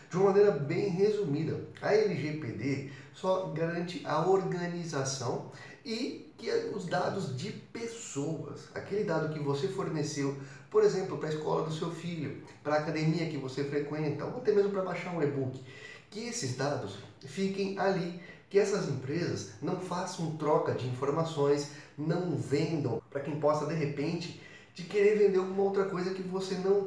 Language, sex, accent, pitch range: Portuguese, male, Brazilian, 140-185 Hz